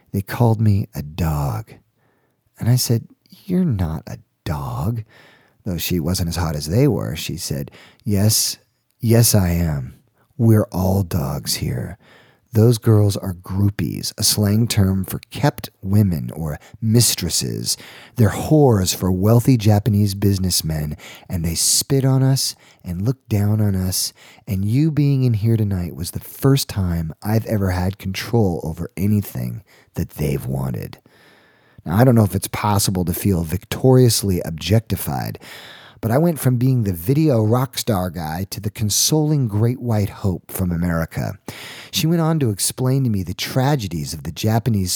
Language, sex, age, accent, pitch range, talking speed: English, male, 40-59, American, 90-120 Hz, 155 wpm